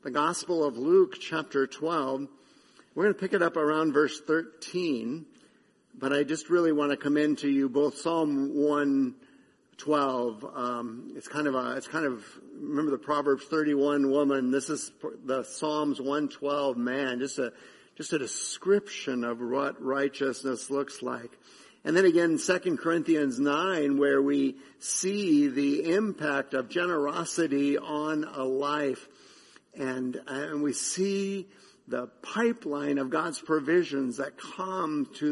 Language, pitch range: English, 135-165 Hz